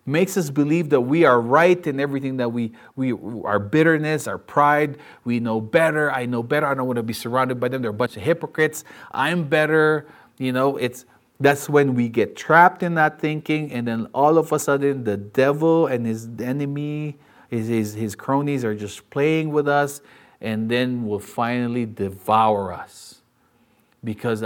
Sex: male